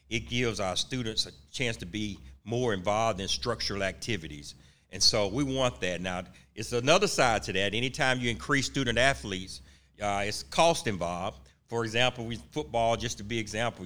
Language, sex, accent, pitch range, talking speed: English, male, American, 95-115 Hz, 175 wpm